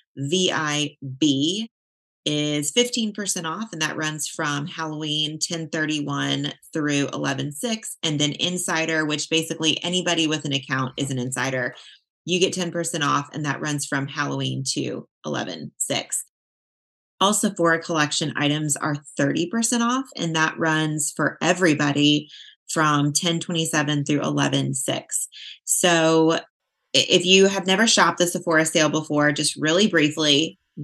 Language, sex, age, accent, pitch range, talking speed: English, female, 30-49, American, 150-175 Hz, 125 wpm